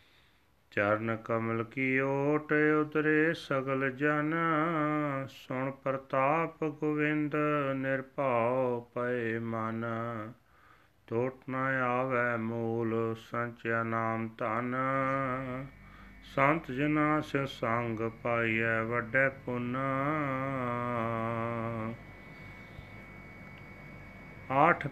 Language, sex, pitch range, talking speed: Punjabi, male, 110-135 Hz, 65 wpm